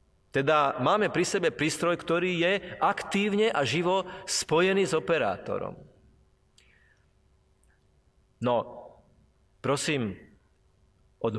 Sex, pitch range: male, 135-190 Hz